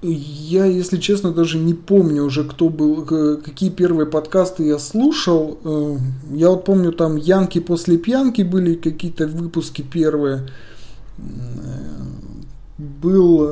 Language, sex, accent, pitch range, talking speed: Russian, male, native, 145-175 Hz, 115 wpm